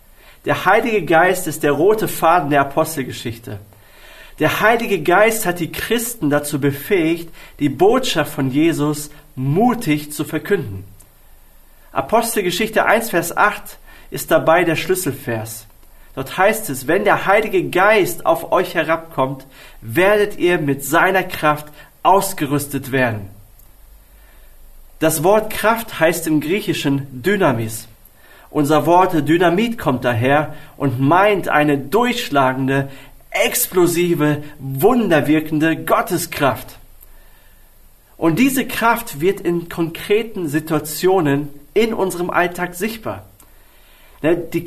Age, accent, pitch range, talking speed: 40-59, German, 135-185 Hz, 105 wpm